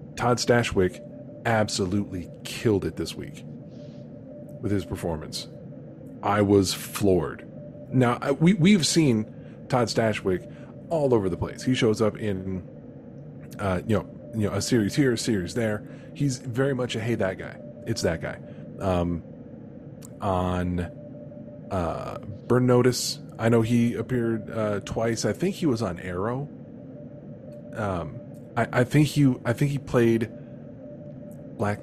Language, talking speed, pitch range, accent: English, 145 wpm, 100-125 Hz, American